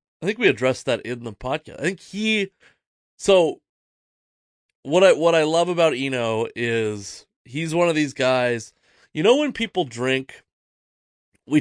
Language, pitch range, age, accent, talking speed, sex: English, 115-145 Hz, 30-49, American, 160 wpm, male